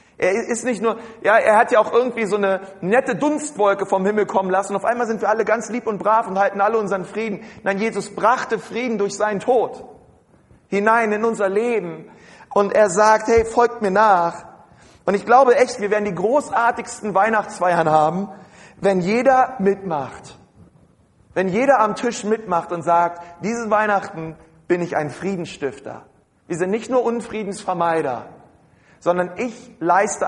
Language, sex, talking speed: German, male, 165 wpm